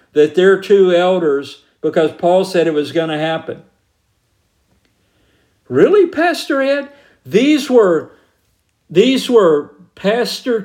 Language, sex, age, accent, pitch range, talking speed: English, male, 50-69, American, 165-235 Hz, 100 wpm